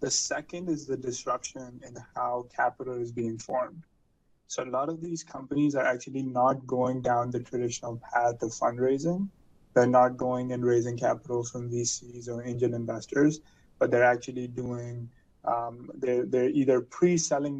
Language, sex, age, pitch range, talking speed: English, male, 20-39, 120-135 Hz, 160 wpm